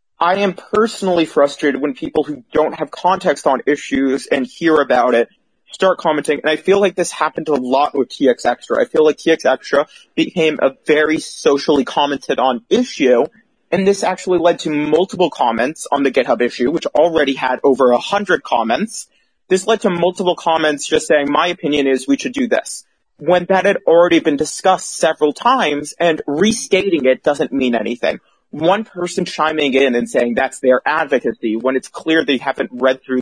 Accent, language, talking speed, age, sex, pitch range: American, English, 185 wpm, 30-49, male, 135-185 Hz